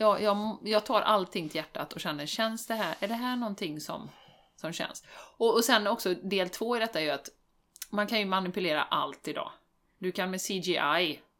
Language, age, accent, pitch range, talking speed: Swedish, 30-49, native, 160-205 Hz, 210 wpm